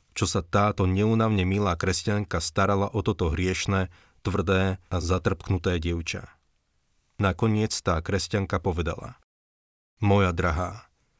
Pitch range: 90-105 Hz